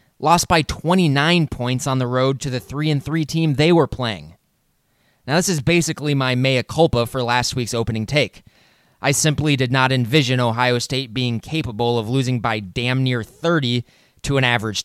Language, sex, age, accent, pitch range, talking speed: English, male, 20-39, American, 125-160 Hz, 180 wpm